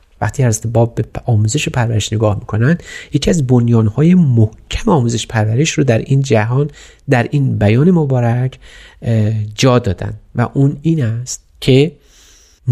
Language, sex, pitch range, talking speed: Persian, male, 110-145 Hz, 135 wpm